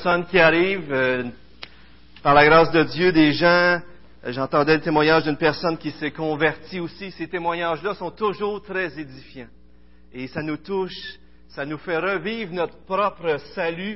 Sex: male